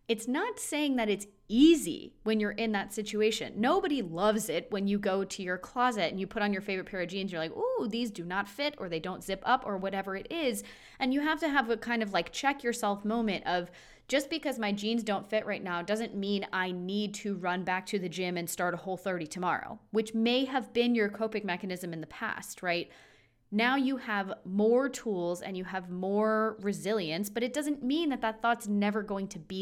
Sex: female